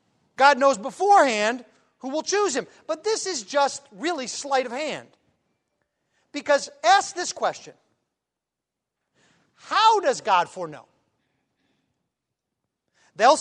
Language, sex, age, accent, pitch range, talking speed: English, male, 40-59, American, 255-355 Hz, 105 wpm